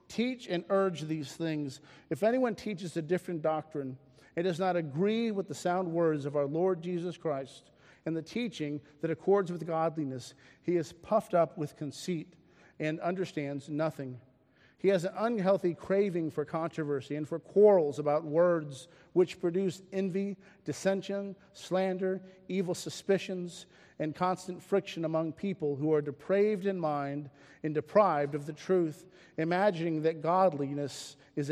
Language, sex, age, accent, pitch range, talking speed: English, male, 50-69, American, 150-185 Hz, 150 wpm